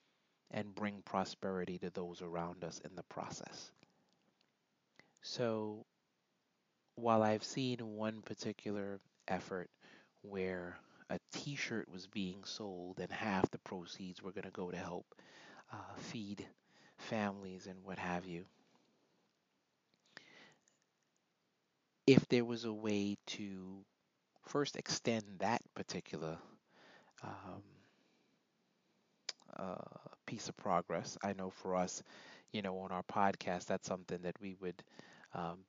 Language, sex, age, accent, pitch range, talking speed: English, male, 30-49, American, 90-110 Hz, 120 wpm